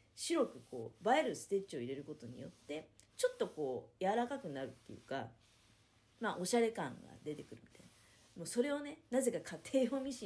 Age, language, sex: 40-59, Japanese, female